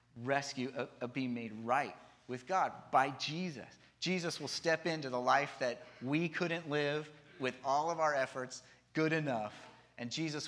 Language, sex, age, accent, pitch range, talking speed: English, male, 30-49, American, 120-150 Hz, 160 wpm